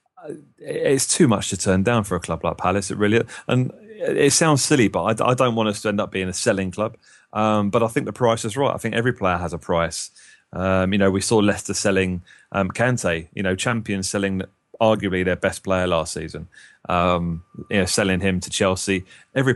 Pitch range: 95-110 Hz